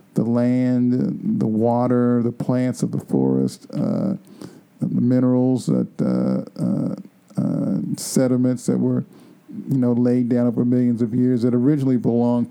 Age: 50-69